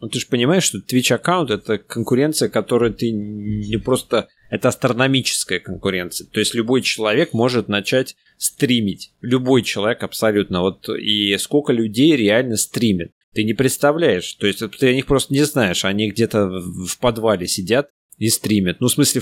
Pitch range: 100-125 Hz